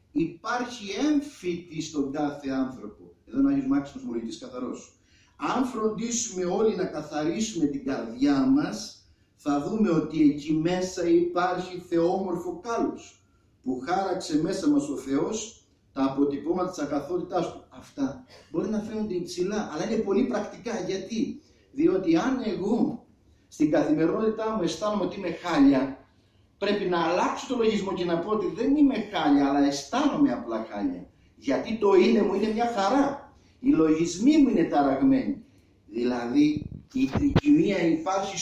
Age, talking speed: 50-69, 140 wpm